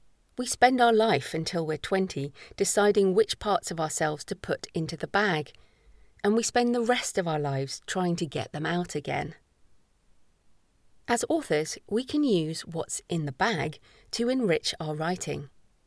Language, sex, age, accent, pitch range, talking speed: English, female, 40-59, British, 155-215 Hz, 165 wpm